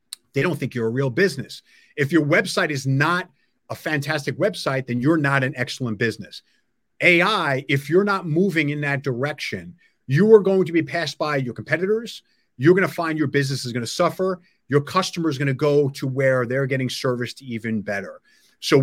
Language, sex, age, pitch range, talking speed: English, male, 30-49, 130-165 Hz, 200 wpm